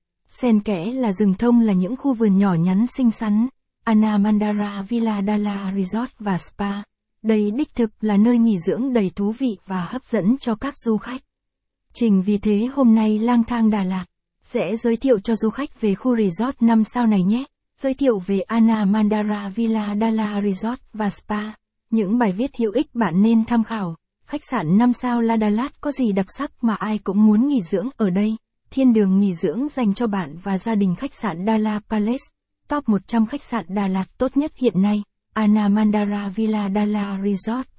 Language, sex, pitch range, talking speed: Vietnamese, female, 205-235 Hz, 195 wpm